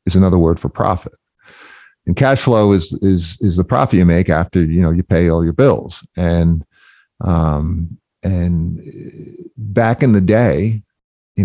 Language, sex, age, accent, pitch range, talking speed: English, male, 50-69, American, 80-100 Hz, 160 wpm